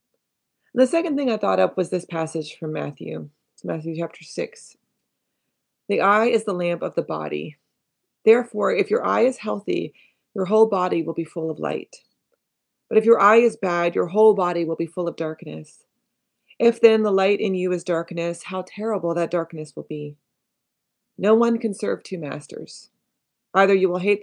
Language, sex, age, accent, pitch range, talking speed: English, female, 30-49, American, 165-205 Hz, 185 wpm